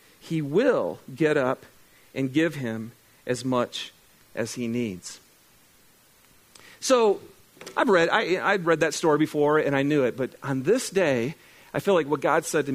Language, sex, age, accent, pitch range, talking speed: English, male, 40-59, American, 150-210 Hz, 170 wpm